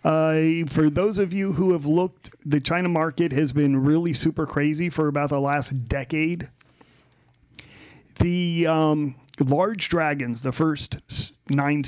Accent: American